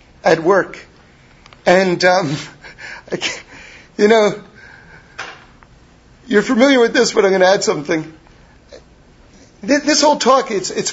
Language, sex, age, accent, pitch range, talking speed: English, male, 50-69, American, 180-275 Hz, 110 wpm